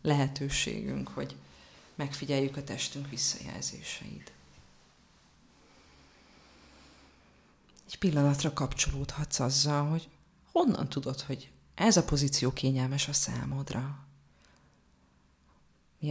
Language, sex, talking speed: Hungarian, female, 80 wpm